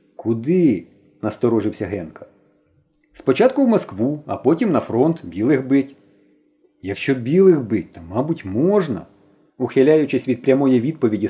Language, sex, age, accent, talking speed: Ukrainian, male, 40-59, native, 125 wpm